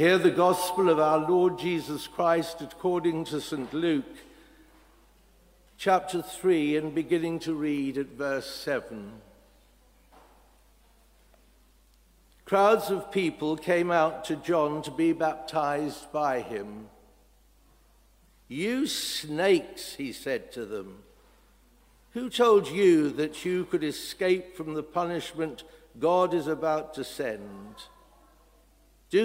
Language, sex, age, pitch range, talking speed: English, male, 60-79, 150-180 Hz, 115 wpm